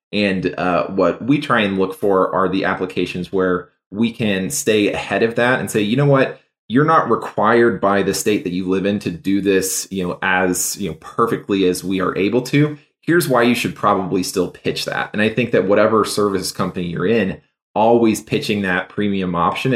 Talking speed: 210 wpm